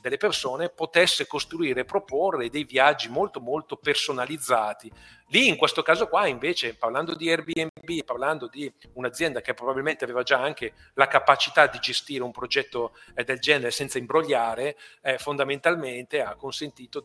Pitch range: 135-175 Hz